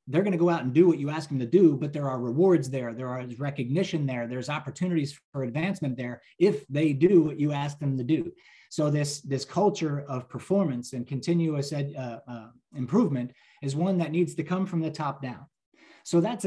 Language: English